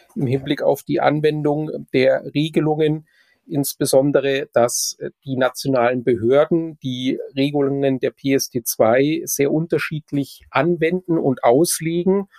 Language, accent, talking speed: German, German, 105 wpm